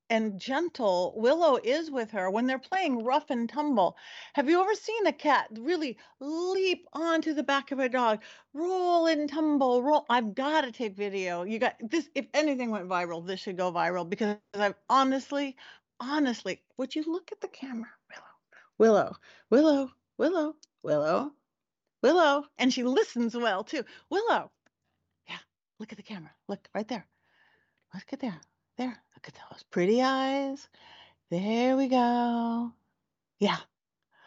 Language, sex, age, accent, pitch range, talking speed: English, female, 40-59, American, 210-285 Hz, 155 wpm